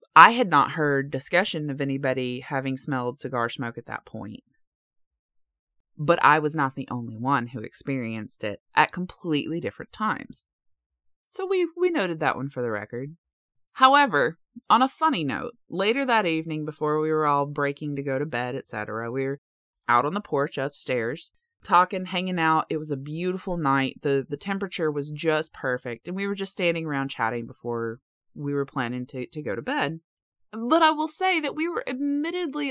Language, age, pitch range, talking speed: English, 30-49, 130-180 Hz, 185 wpm